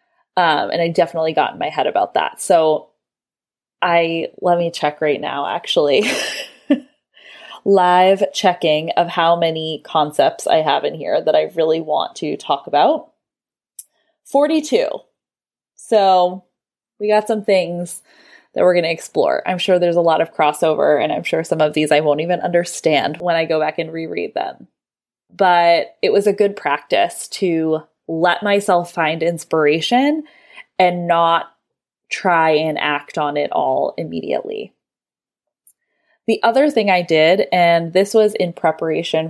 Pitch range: 160-205 Hz